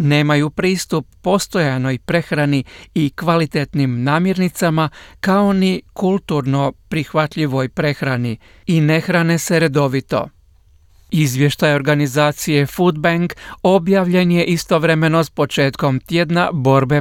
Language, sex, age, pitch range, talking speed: Croatian, male, 50-69, 140-170 Hz, 90 wpm